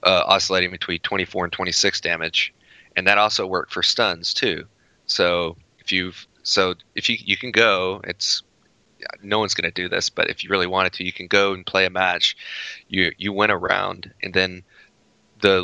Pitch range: 90-100 Hz